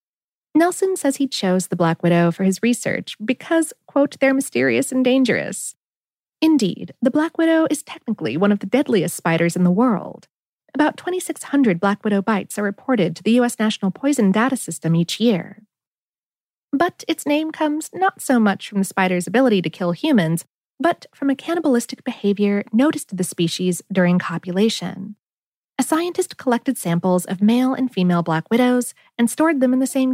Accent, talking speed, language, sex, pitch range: American, 175 wpm, English, female, 185-285 Hz